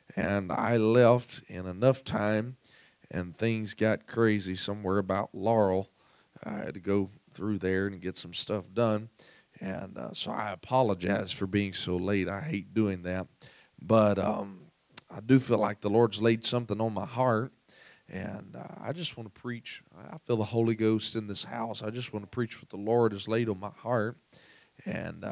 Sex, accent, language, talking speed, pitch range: male, American, English, 185 wpm, 100-120 Hz